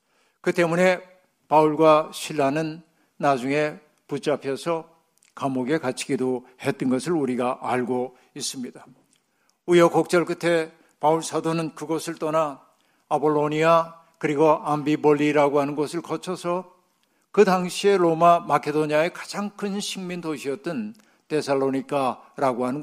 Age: 60-79